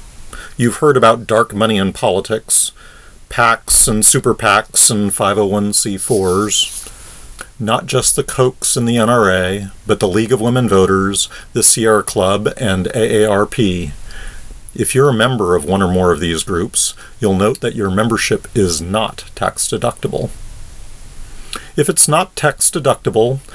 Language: English